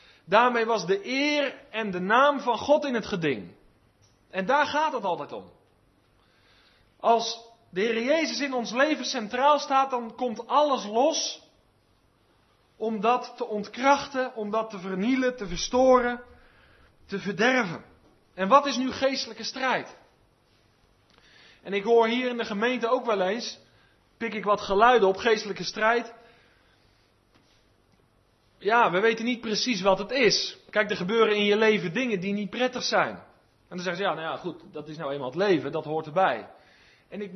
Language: Dutch